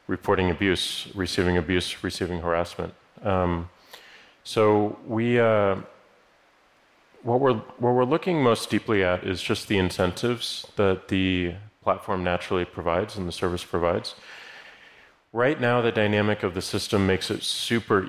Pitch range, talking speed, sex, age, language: 90-105 Hz, 130 wpm, male, 30-49, English